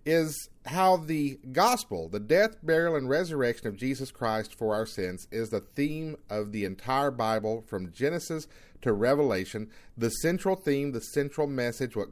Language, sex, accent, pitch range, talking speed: English, male, American, 115-155 Hz, 165 wpm